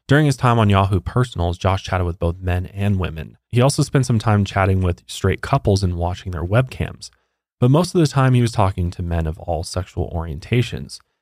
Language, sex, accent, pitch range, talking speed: English, male, American, 90-115 Hz, 215 wpm